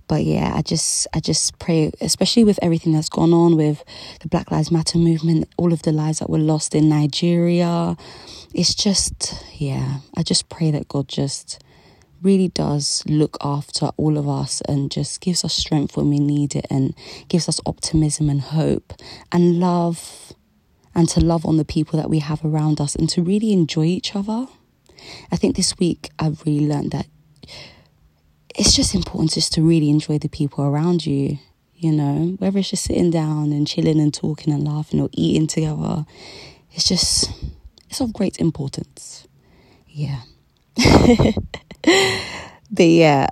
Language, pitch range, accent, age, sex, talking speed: English, 140-170 Hz, British, 20-39, female, 170 wpm